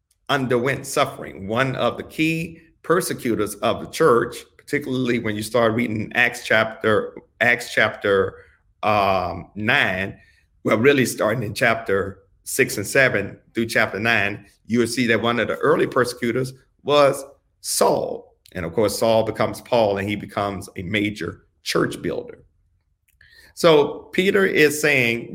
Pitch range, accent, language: 105-130 Hz, American, English